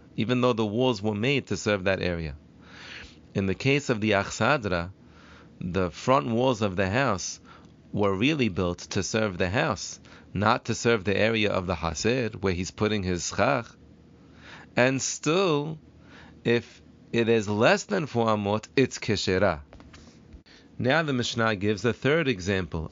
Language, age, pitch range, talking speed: English, 40-59, 95-125 Hz, 155 wpm